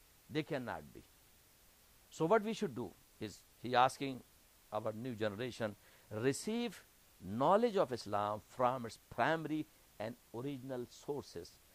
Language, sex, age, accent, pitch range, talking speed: English, male, 60-79, Indian, 110-170 Hz, 125 wpm